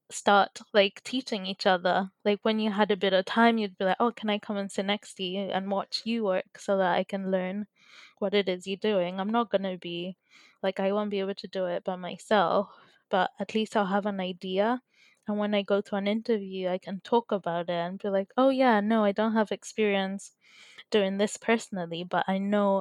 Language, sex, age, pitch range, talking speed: English, female, 20-39, 190-215 Hz, 230 wpm